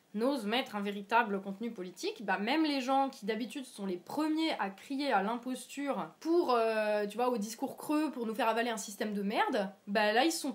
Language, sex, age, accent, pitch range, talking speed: French, female, 20-39, French, 215-280 Hz, 220 wpm